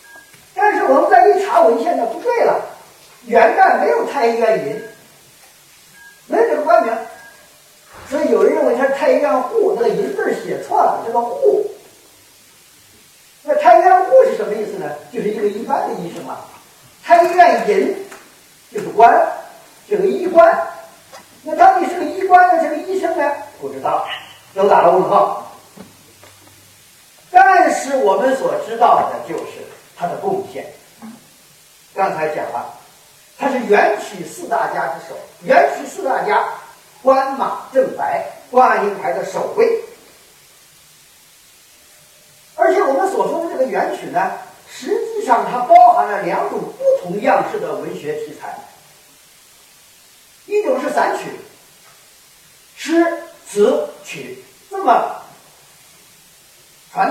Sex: male